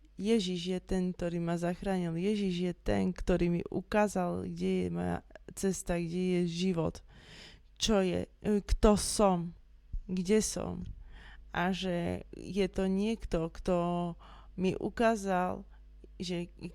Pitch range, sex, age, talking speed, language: 170-195 Hz, female, 20-39, 120 wpm, Slovak